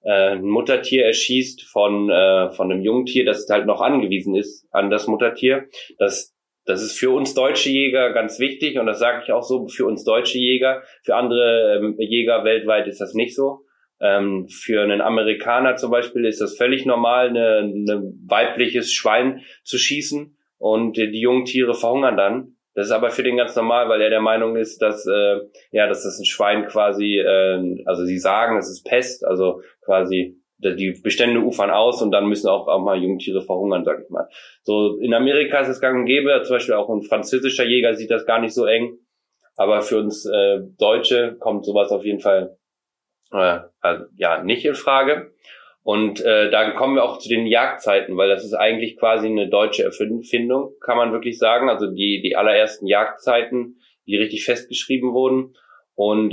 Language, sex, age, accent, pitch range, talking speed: German, male, 20-39, German, 105-130 Hz, 185 wpm